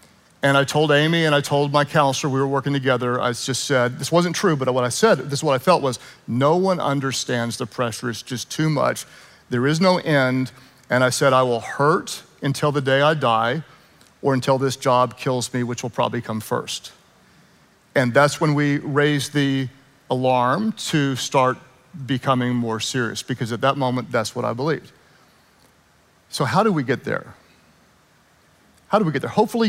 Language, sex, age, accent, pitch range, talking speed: English, male, 40-59, American, 125-155 Hz, 195 wpm